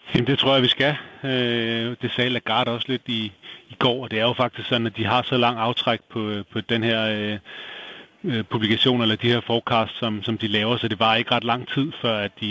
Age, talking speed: 30-49, 245 wpm